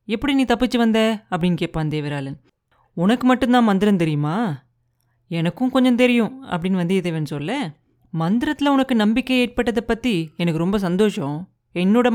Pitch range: 165-230 Hz